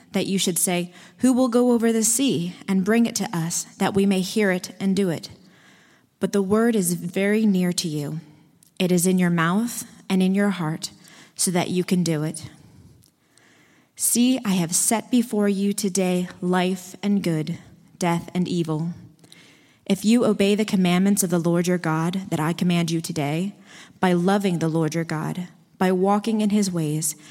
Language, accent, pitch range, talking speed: English, American, 170-205 Hz, 185 wpm